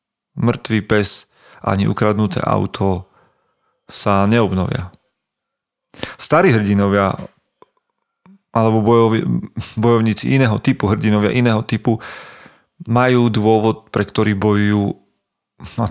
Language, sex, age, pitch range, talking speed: Slovak, male, 40-59, 105-120 Hz, 85 wpm